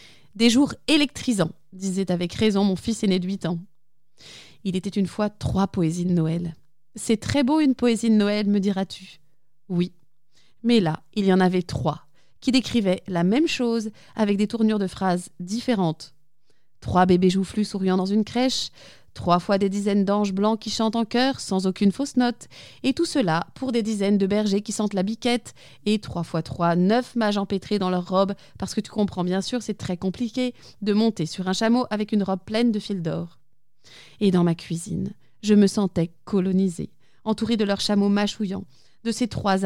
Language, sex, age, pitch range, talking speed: French, female, 20-39, 175-225 Hz, 195 wpm